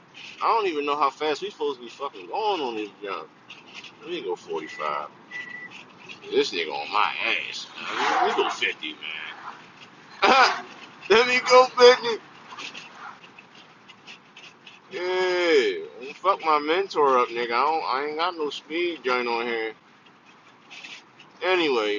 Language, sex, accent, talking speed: English, male, American, 145 wpm